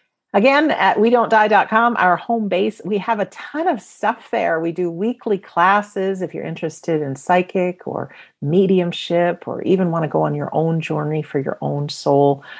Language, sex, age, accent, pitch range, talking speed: English, female, 50-69, American, 145-200 Hz, 185 wpm